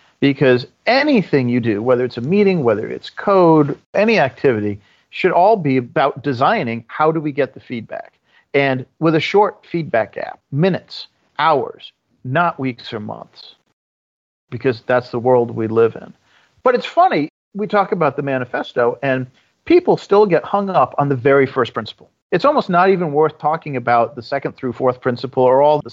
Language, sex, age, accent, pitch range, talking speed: English, male, 40-59, American, 120-165 Hz, 180 wpm